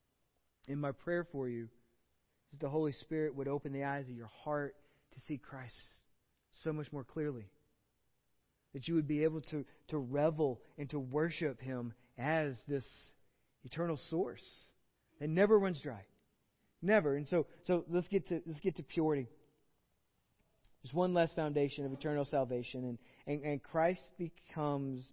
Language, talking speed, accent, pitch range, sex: English, 160 wpm, American, 135-160 Hz, male